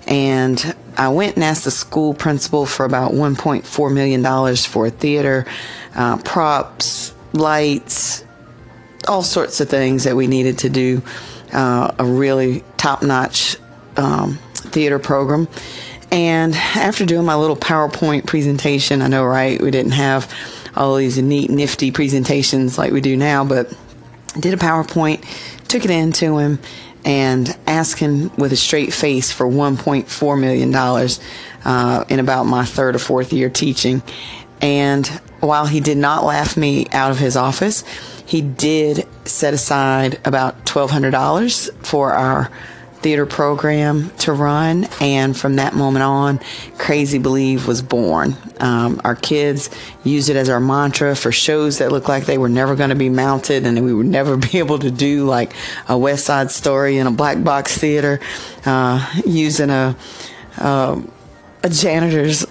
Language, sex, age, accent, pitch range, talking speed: English, female, 40-59, American, 130-150 Hz, 155 wpm